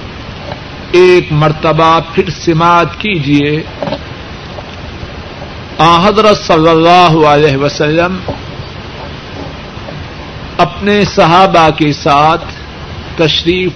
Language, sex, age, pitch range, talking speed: Urdu, male, 50-69, 150-195 Hz, 70 wpm